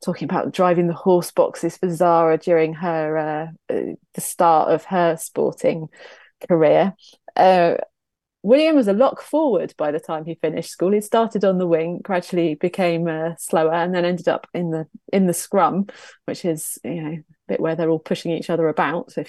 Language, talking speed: English, 195 wpm